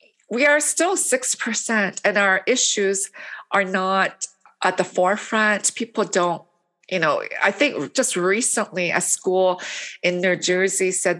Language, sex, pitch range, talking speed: English, female, 185-225 Hz, 140 wpm